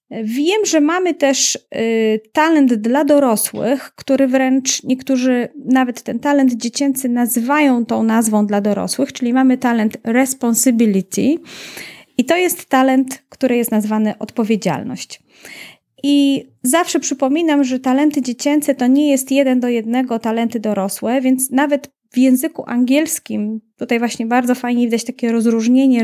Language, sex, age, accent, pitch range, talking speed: Polish, female, 30-49, native, 225-275 Hz, 130 wpm